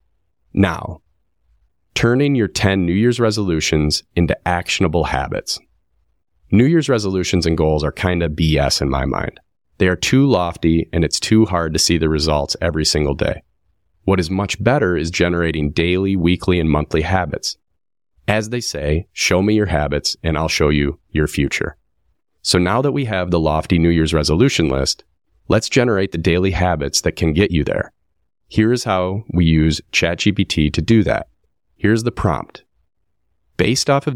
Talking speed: 170 wpm